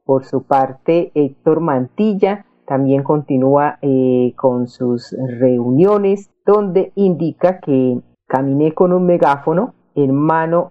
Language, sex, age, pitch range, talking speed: Spanish, female, 40-59, 135-170 Hz, 110 wpm